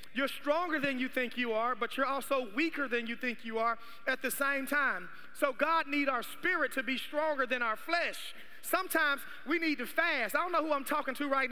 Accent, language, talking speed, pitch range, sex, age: American, English, 230 wpm, 230-295 Hz, male, 30-49